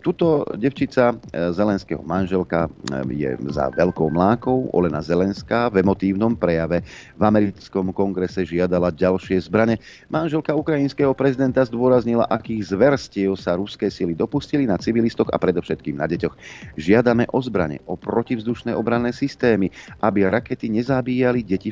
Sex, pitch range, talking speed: male, 90-120 Hz, 125 wpm